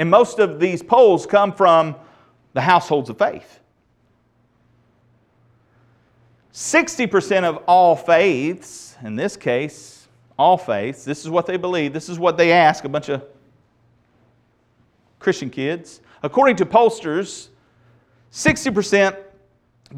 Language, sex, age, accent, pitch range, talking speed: English, male, 40-59, American, 120-140 Hz, 115 wpm